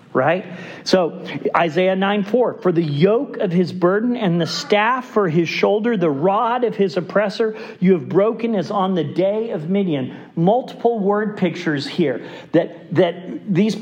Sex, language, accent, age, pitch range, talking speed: male, English, American, 40-59, 165-205 Hz, 165 wpm